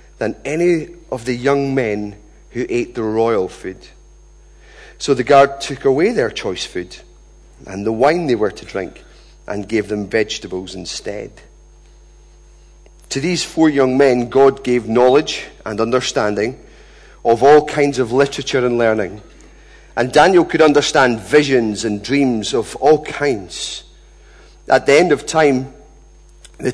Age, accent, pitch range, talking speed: 40-59, British, 115-155 Hz, 145 wpm